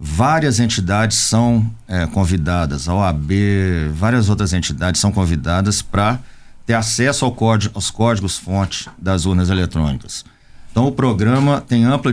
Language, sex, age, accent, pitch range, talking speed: Portuguese, male, 50-69, Brazilian, 95-120 Hz, 120 wpm